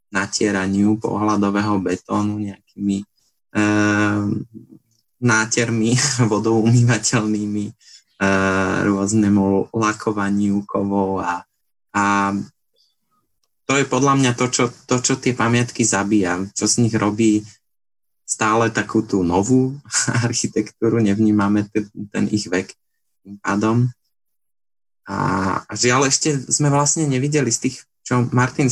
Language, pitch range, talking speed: Slovak, 100-115 Hz, 110 wpm